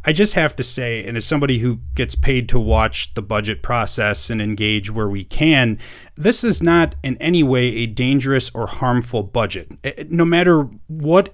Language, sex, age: English, male, 30-49